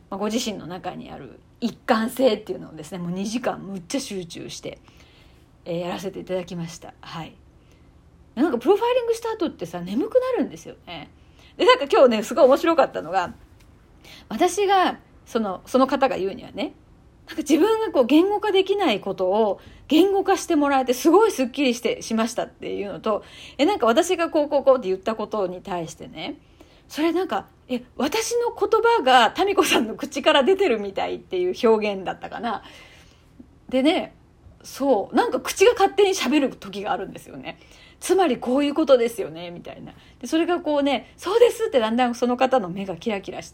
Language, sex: Japanese, female